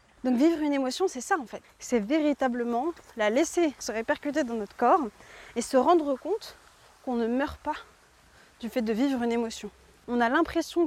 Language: French